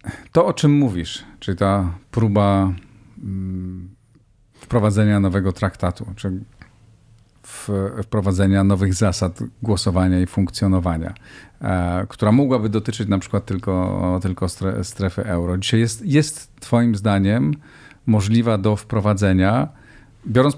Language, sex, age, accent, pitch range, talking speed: Polish, male, 40-59, native, 95-120 Hz, 100 wpm